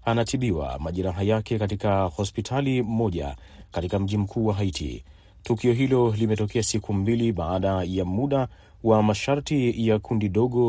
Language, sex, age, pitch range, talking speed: Swahili, male, 30-49, 95-115 Hz, 135 wpm